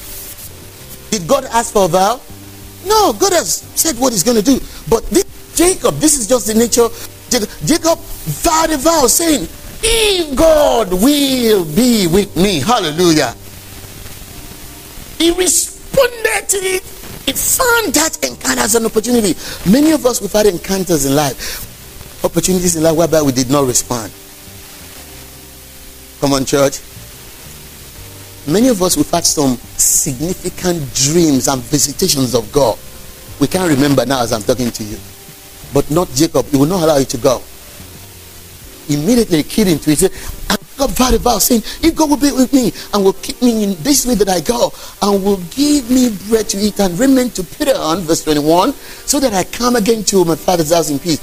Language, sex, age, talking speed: English, male, 50-69, 170 wpm